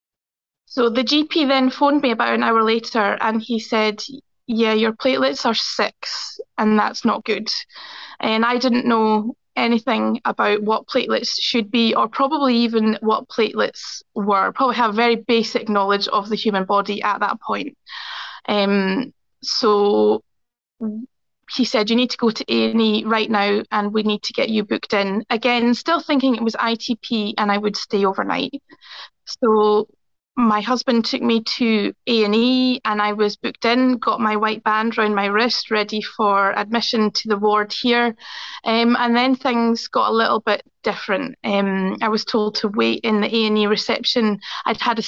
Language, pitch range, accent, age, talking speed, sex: English, 210-240 Hz, British, 20-39, 170 wpm, female